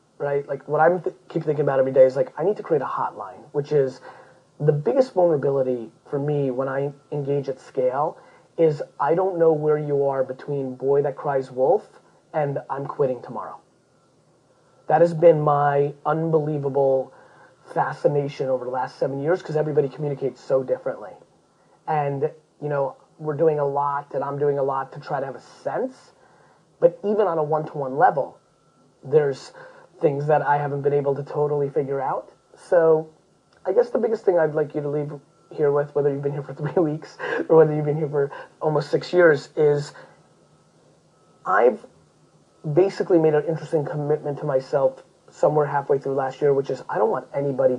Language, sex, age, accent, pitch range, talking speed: English, male, 30-49, American, 140-160 Hz, 185 wpm